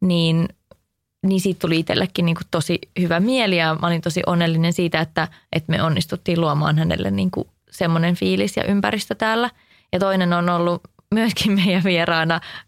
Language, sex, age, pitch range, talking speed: English, female, 20-39, 170-190 Hz, 165 wpm